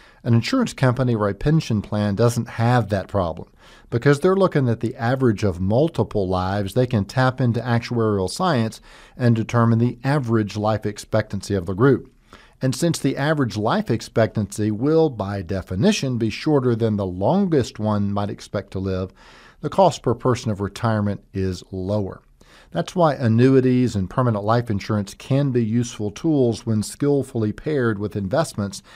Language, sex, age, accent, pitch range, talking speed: English, male, 50-69, American, 100-130 Hz, 160 wpm